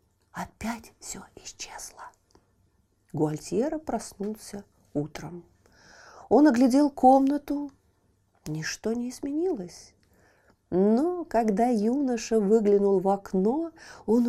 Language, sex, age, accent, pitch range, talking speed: Russian, female, 40-59, native, 155-245 Hz, 80 wpm